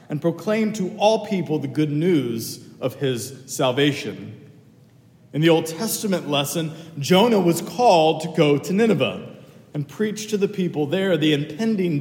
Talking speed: 155 wpm